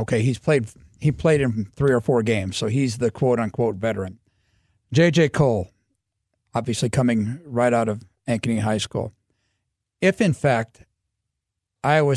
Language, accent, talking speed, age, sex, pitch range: English, American, 150 wpm, 50-69, male, 105-140 Hz